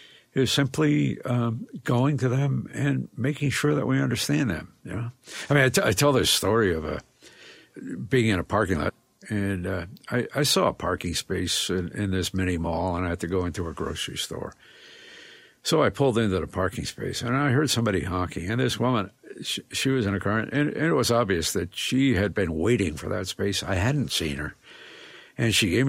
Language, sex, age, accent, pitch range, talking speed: English, male, 60-79, American, 95-125 Hz, 215 wpm